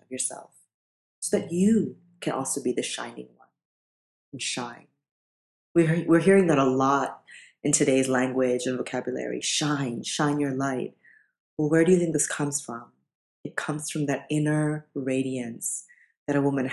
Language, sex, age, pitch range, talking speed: English, female, 30-49, 130-165 Hz, 160 wpm